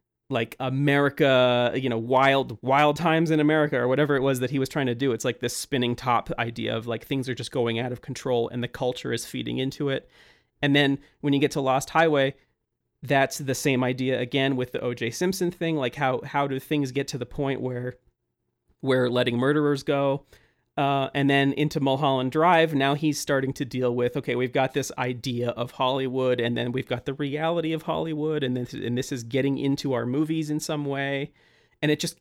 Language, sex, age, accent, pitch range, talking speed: English, male, 30-49, American, 125-145 Hz, 215 wpm